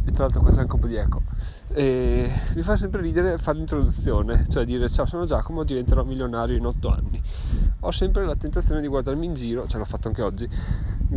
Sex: male